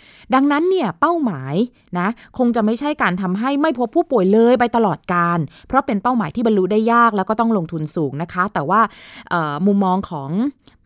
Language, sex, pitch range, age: Thai, female, 170-235 Hz, 20-39